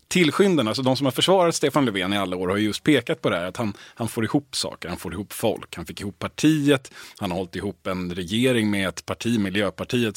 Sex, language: male, Swedish